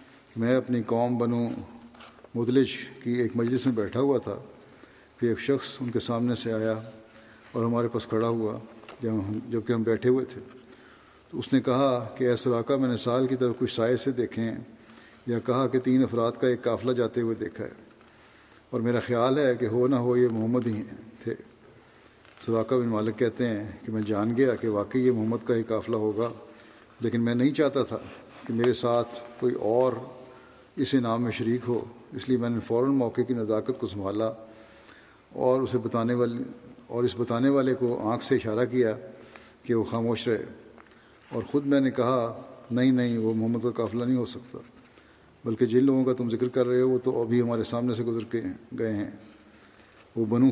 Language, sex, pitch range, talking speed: Urdu, male, 115-125 Hz, 195 wpm